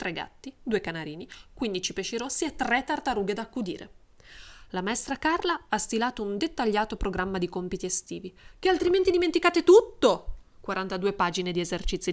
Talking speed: 155 wpm